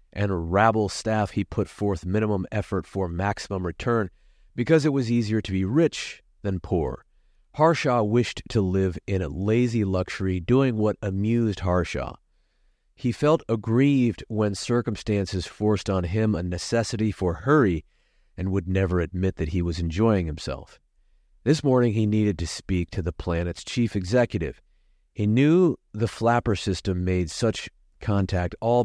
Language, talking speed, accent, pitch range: English, 150 wpm, American, 90-115 Hz